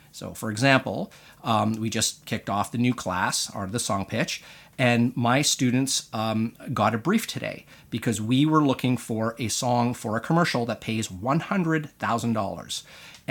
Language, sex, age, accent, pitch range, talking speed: English, male, 30-49, American, 110-145 Hz, 160 wpm